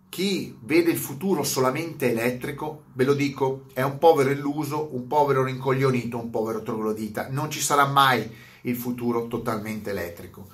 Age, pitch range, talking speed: 30-49, 120-155 Hz, 155 wpm